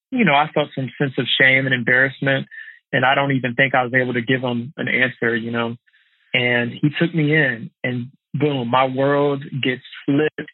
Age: 20-39